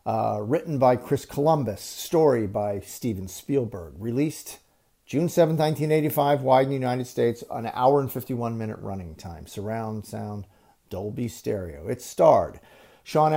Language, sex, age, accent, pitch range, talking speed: English, male, 50-69, American, 110-145 Hz, 145 wpm